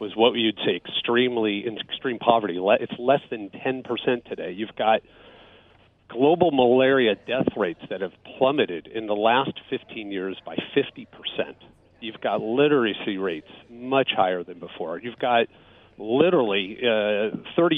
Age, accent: 40-59, American